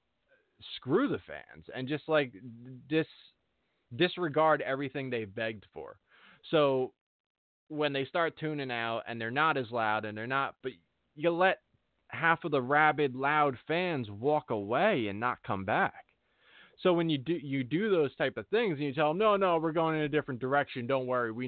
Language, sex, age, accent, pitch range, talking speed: English, male, 20-39, American, 120-180 Hz, 185 wpm